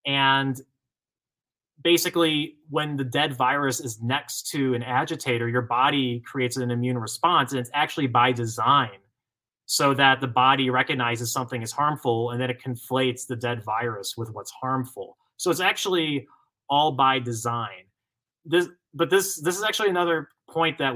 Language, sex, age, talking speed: English, male, 30-49, 155 wpm